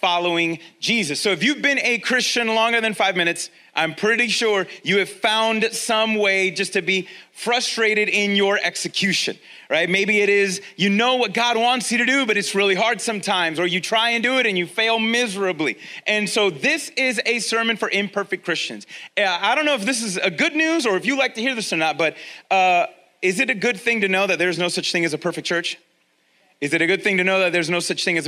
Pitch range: 190-260 Hz